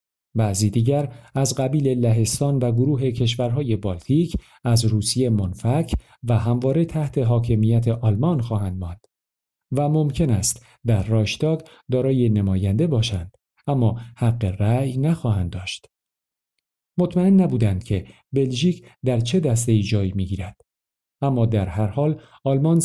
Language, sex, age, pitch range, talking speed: Persian, male, 50-69, 110-140 Hz, 125 wpm